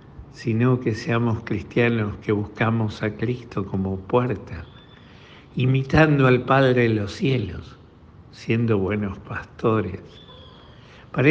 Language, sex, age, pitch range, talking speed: Spanish, male, 60-79, 105-125 Hz, 105 wpm